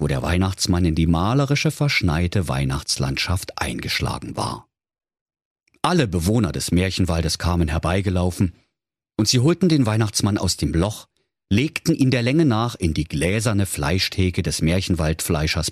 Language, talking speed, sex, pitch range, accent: German, 135 wpm, male, 90-120 Hz, German